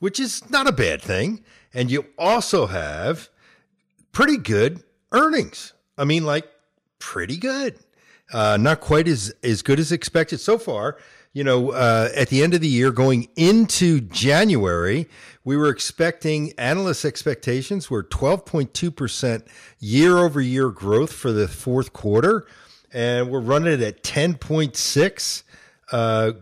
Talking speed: 135 wpm